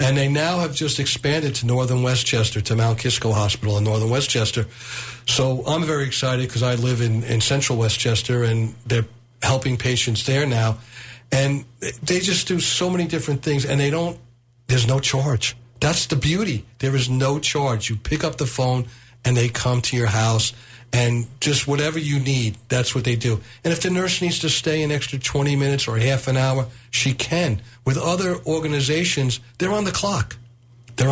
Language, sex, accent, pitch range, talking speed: English, male, American, 120-140 Hz, 195 wpm